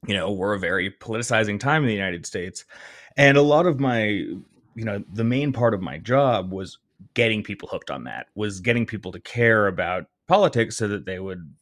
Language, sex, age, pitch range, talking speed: English, male, 30-49, 100-125 Hz, 210 wpm